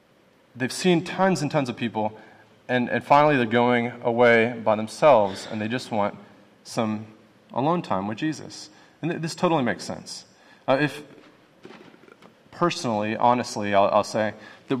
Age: 30-49